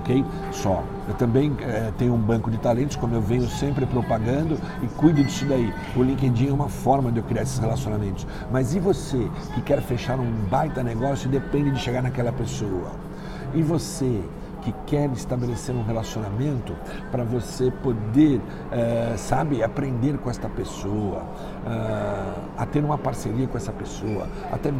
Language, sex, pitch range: Portuguese, male, 120-145 Hz